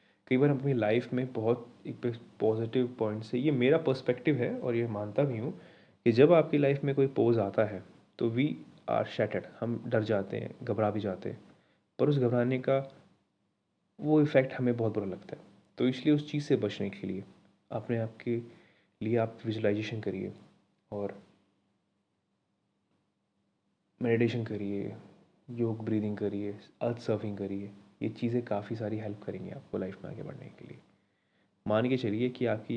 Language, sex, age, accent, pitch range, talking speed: Hindi, male, 20-39, native, 105-130 Hz, 170 wpm